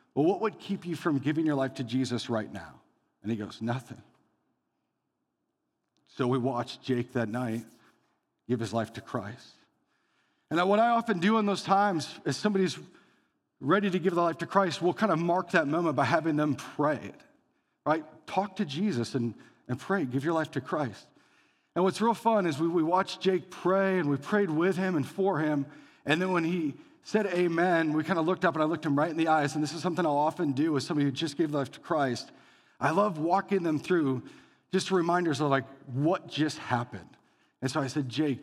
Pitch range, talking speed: 140-190 Hz, 215 wpm